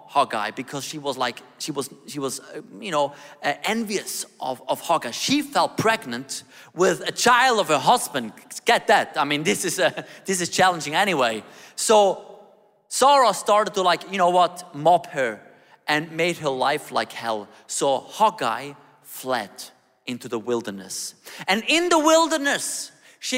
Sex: male